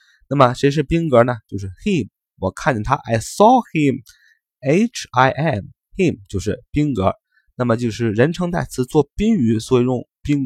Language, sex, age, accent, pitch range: Chinese, male, 20-39, native, 105-150 Hz